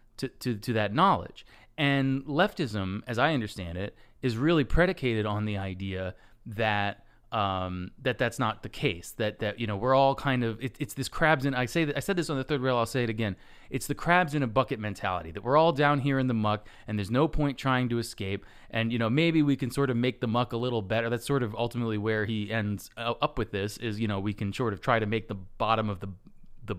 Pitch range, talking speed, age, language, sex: 105-135 Hz, 250 wpm, 30-49, English, male